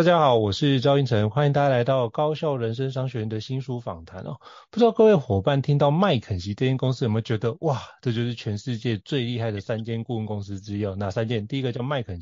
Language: Chinese